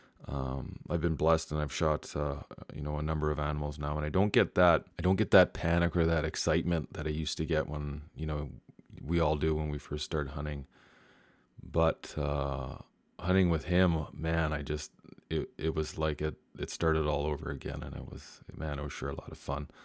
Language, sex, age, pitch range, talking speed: English, male, 20-39, 75-85 Hz, 220 wpm